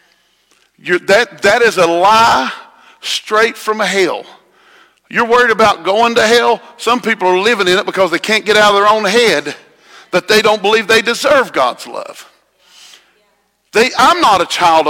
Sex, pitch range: male, 215-330 Hz